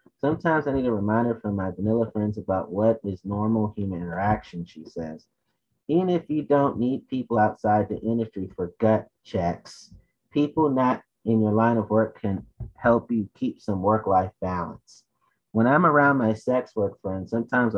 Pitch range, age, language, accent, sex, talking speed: 100-125 Hz, 30-49, English, American, male, 170 wpm